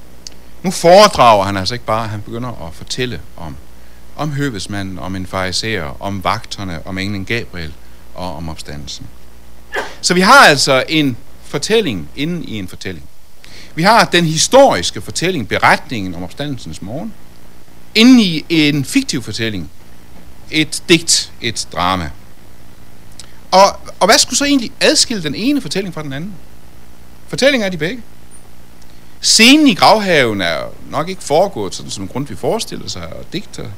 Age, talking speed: 60-79, 145 wpm